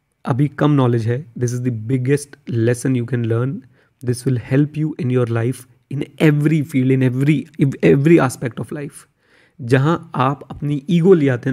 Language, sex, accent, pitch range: Hindi, male, native, 120-145 Hz